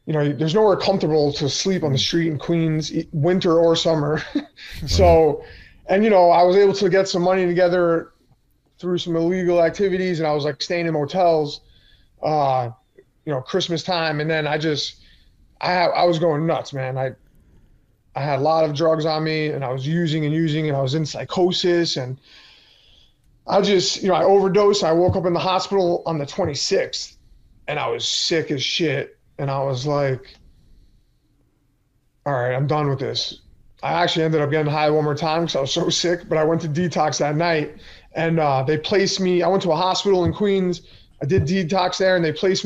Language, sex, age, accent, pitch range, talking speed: English, male, 20-39, American, 145-175 Hz, 205 wpm